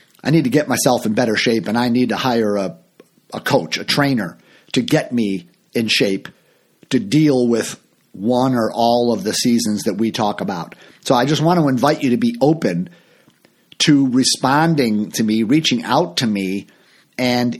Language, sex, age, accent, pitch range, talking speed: English, male, 50-69, American, 110-150 Hz, 190 wpm